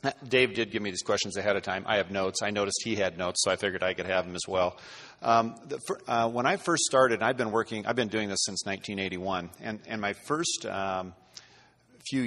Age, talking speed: 40-59, 240 wpm